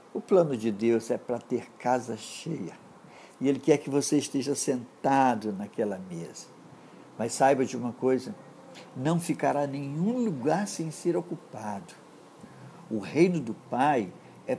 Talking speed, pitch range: 145 wpm, 115-160 Hz